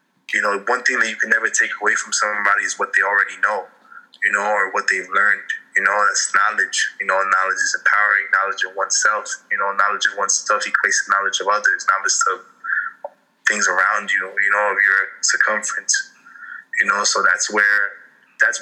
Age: 20-39